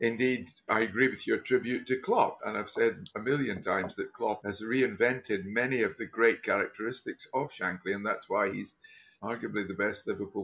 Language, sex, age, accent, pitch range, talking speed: English, male, 50-69, British, 105-155 Hz, 190 wpm